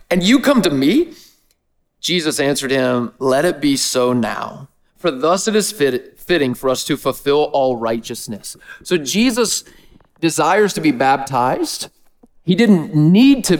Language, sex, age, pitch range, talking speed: English, male, 30-49, 130-200 Hz, 155 wpm